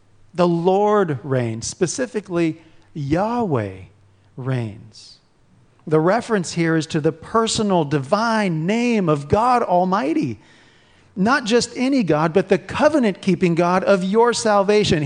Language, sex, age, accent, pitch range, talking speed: English, male, 40-59, American, 145-200 Hz, 115 wpm